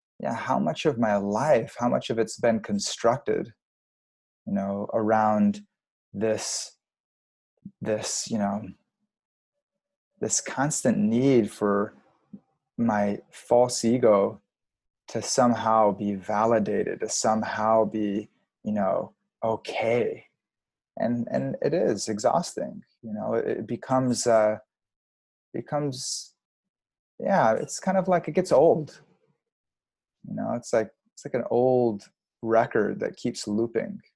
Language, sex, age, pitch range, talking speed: English, male, 20-39, 105-140 Hz, 120 wpm